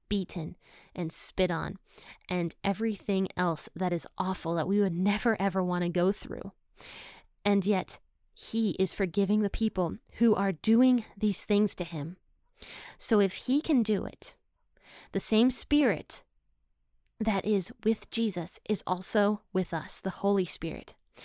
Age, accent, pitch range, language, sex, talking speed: 20-39, American, 175-215 Hz, English, female, 150 wpm